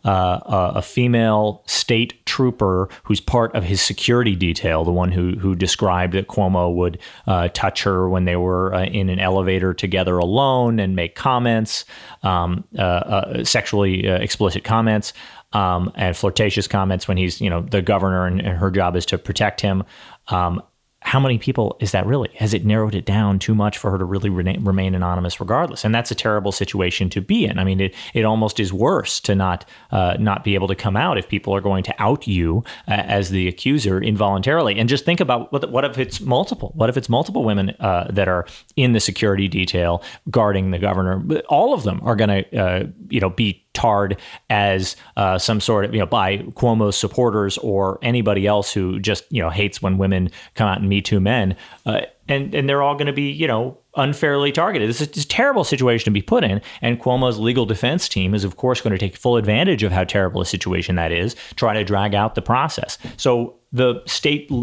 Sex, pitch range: male, 95-115 Hz